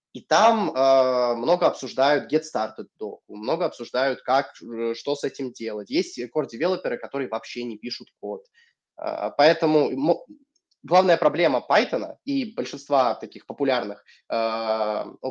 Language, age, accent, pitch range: Russian, 20-39, native, 120-170 Hz